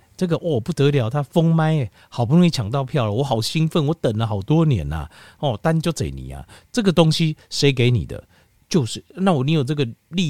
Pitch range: 100-155 Hz